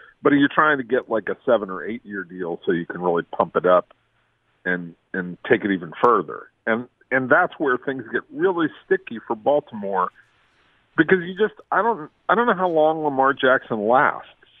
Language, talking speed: English, 195 wpm